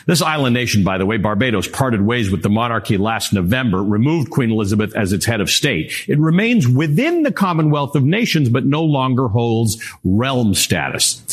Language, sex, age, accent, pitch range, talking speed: English, male, 50-69, American, 115-155 Hz, 185 wpm